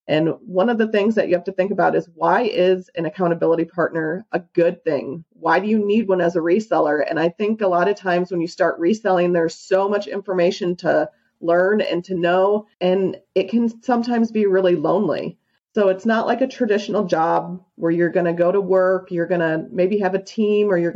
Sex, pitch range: female, 175-210 Hz